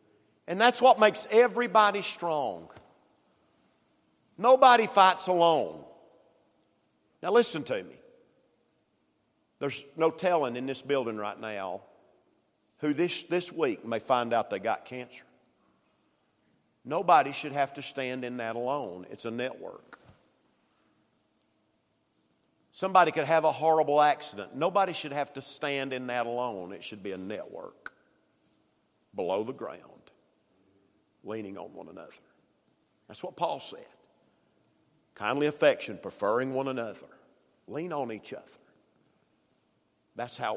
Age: 50-69